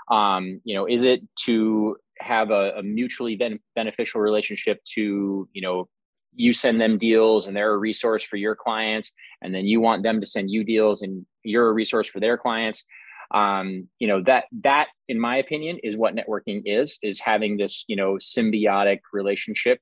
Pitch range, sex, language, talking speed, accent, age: 100-120 Hz, male, English, 190 wpm, American, 20-39